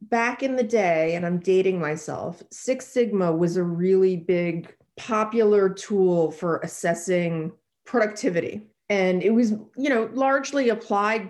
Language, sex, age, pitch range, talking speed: English, female, 30-49, 170-210 Hz, 140 wpm